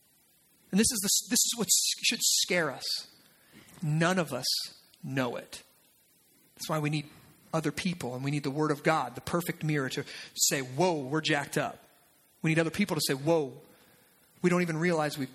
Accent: American